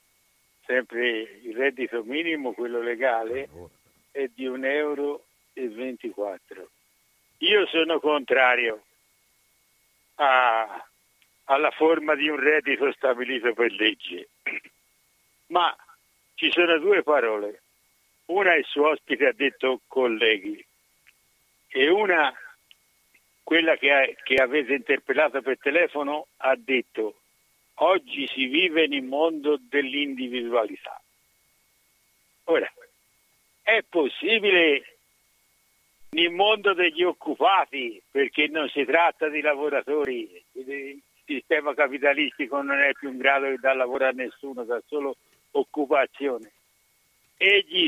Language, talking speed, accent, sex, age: Italian, 105 wpm, native, male, 70-89